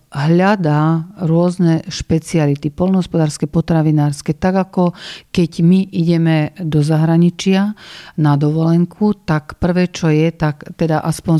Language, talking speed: Slovak, 110 wpm